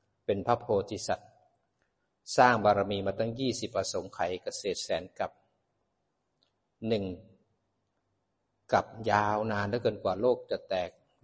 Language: Thai